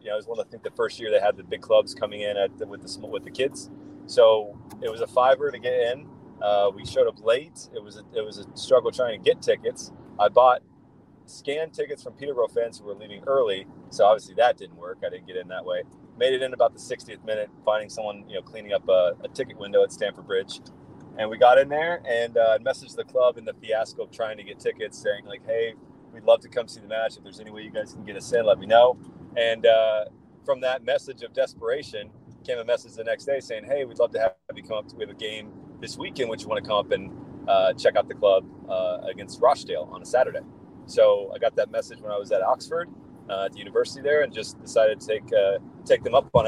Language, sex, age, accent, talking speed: English, male, 30-49, American, 265 wpm